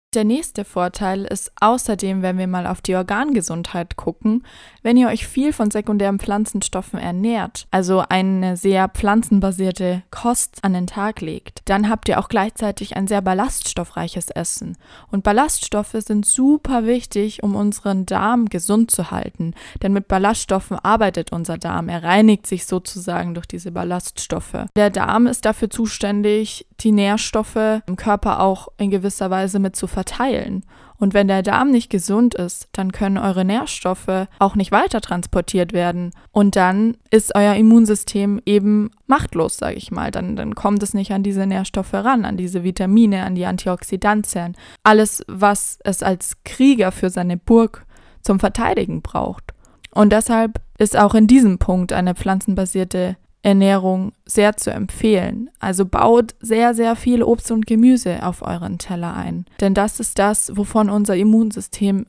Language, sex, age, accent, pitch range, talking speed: German, female, 20-39, German, 190-220 Hz, 155 wpm